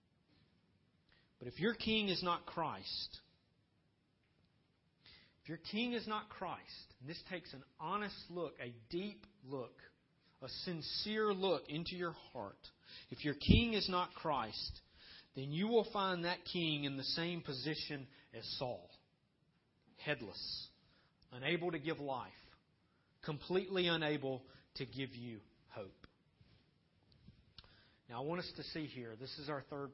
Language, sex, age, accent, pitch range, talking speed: English, male, 40-59, American, 125-175 Hz, 135 wpm